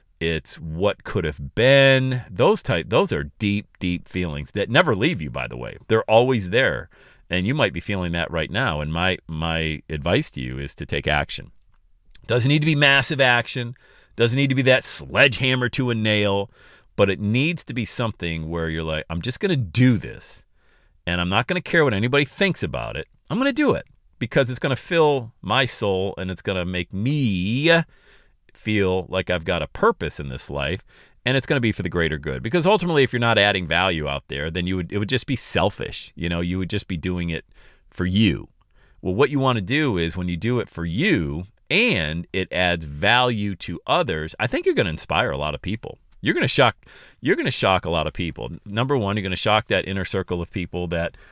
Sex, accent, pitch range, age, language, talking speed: male, American, 85-125 Hz, 40-59, English, 225 wpm